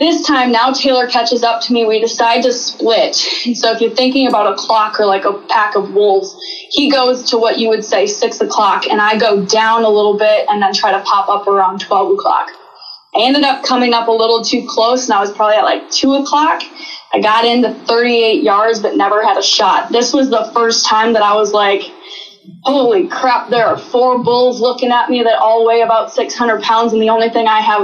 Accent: American